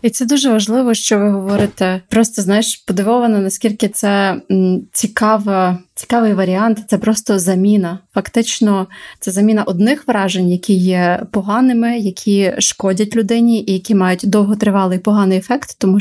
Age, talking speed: 30-49, 135 wpm